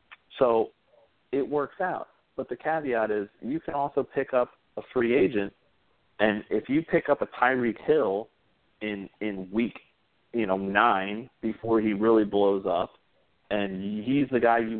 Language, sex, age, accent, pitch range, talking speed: English, male, 40-59, American, 100-130 Hz, 160 wpm